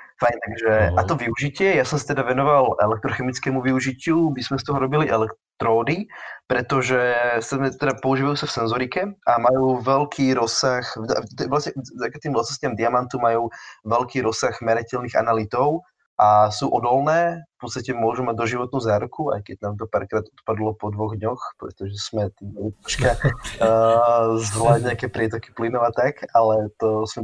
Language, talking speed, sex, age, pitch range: Slovak, 145 wpm, male, 20-39, 110-130 Hz